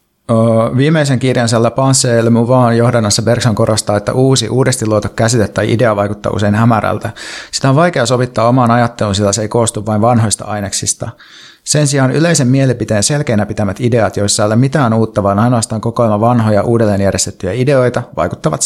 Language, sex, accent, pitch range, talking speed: Finnish, male, native, 105-125 Hz, 155 wpm